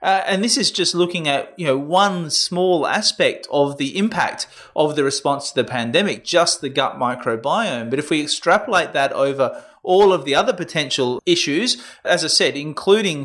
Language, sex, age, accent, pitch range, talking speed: English, male, 30-49, Australian, 135-165 Hz, 185 wpm